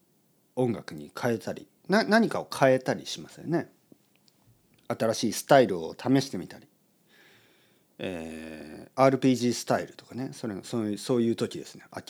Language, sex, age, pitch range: Japanese, male, 40-59, 105-145 Hz